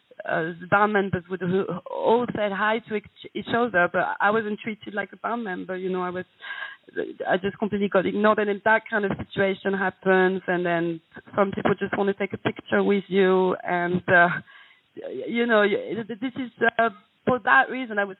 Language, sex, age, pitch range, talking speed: English, female, 40-59, 185-225 Hz, 200 wpm